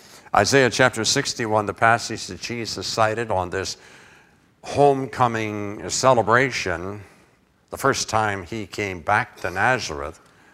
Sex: male